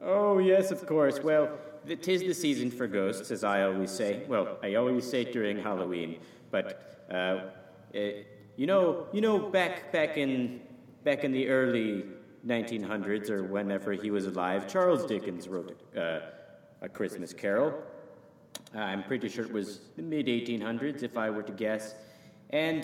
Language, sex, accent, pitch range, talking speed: English, male, American, 100-145 Hz, 170 wpm